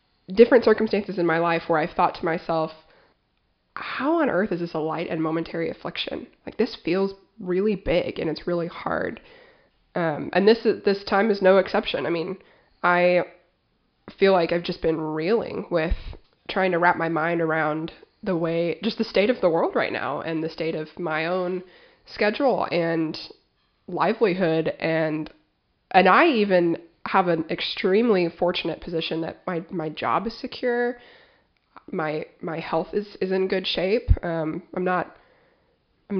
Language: English